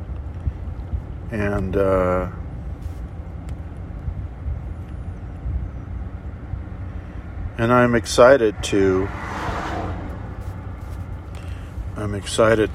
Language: English